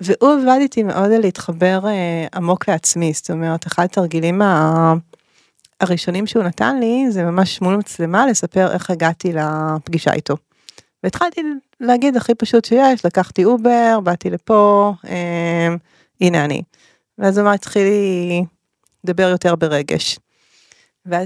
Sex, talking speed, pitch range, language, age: female, 125 wpm, 170-205 Hz, Hebrew, 30-49